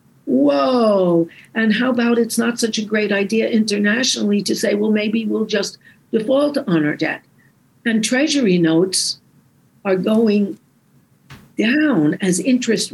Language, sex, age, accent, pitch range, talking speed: English, female, 60-79, American, 190-260 Hz, 135 wpm